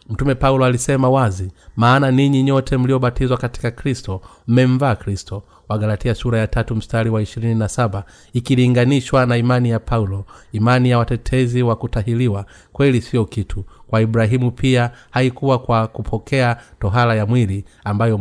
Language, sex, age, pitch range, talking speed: Swahili, male, 30-49, 105-125 Hz, 140 wpm